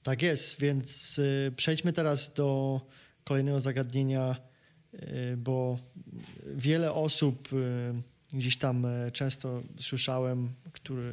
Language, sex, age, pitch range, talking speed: Polish, male, 20-39, 125-145 Hz, 85 wpm